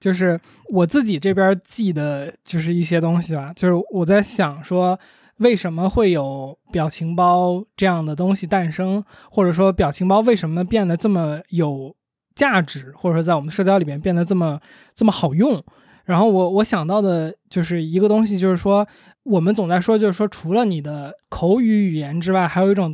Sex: male